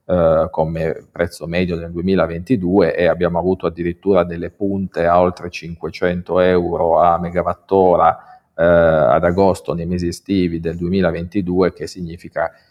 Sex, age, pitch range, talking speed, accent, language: male, 40-59, 85-95 Hz, 130 wpm, native, Italian